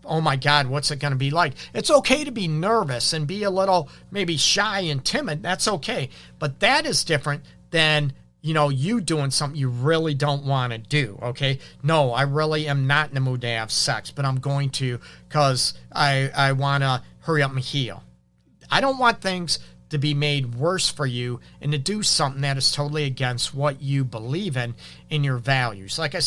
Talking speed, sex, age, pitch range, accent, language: 210 wpm, male, 40-59, 130-160 Hz, American, English